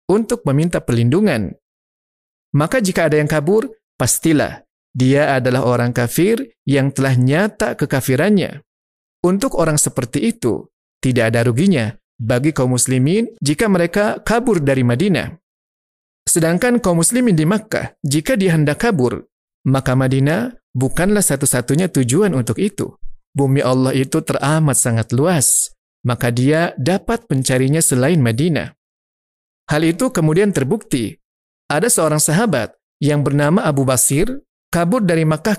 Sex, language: male, Indonesian